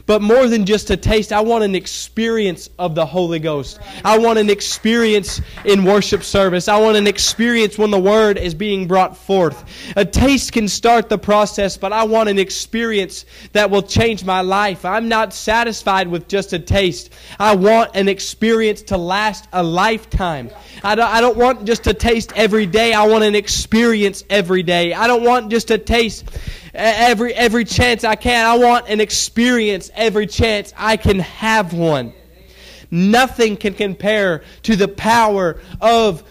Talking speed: 175 wpm